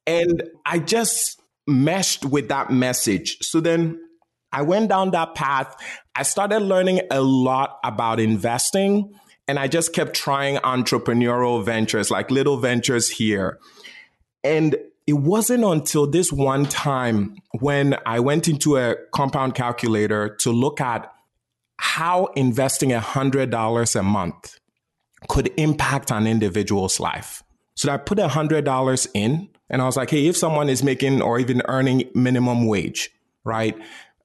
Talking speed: 140 wpm